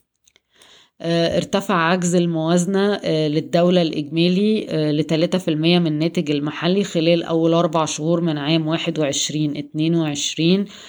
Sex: female